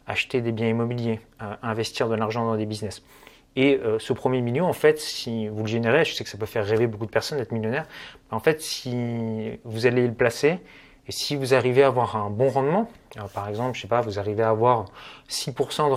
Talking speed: 225 wpm